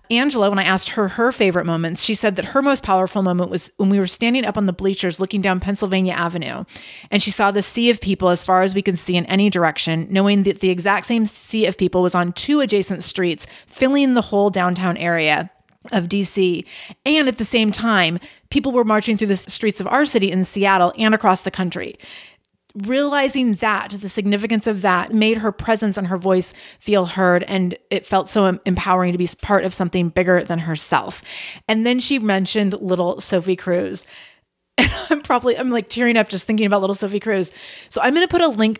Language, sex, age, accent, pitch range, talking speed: English, female, 30-49, American, 185-225 Hz, 210 wpm